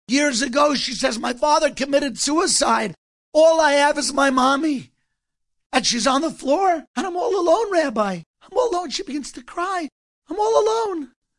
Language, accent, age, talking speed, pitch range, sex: English, American, 50-69, 180 wpm, 245-325 Hz, male